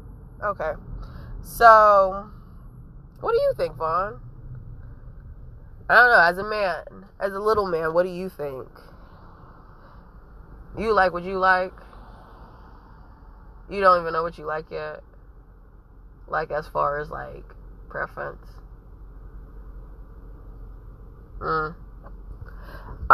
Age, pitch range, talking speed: 20-39, 160-250 Hz, 105 wpm